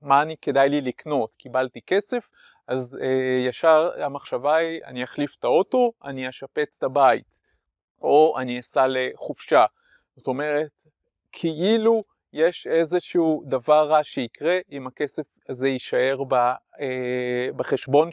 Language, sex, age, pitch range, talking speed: Hebrew, male, 30-49, 130-165 Hz, 130 wpm